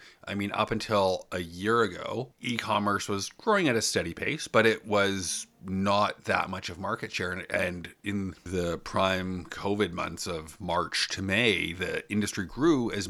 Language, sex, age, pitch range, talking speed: English, male, 30-49, 90-105 Hz, 170 wpm